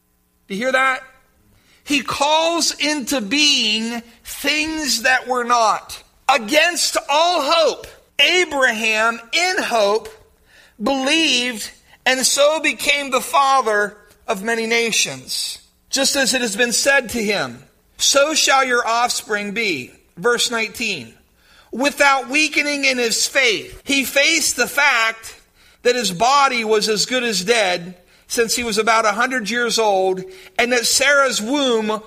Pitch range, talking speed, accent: 215-280 Hz, 130 wpm, American